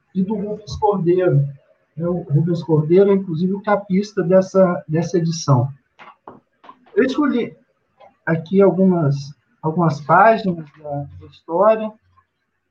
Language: Portuguese